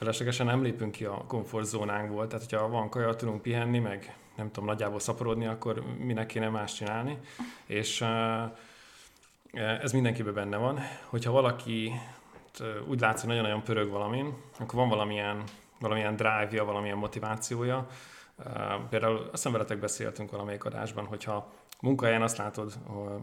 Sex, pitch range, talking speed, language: male, 105-120 Hz, 130 wpm, Hungarian